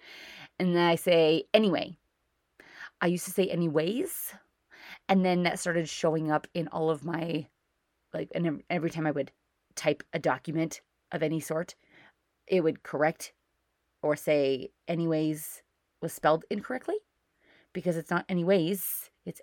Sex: female